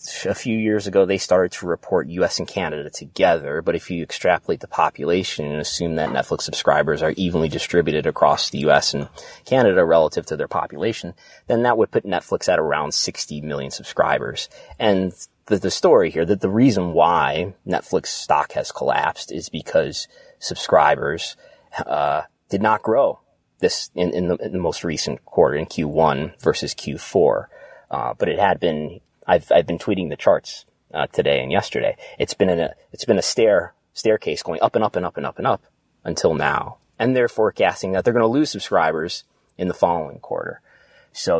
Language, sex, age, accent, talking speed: English, male, 30-49, American, 185 wpm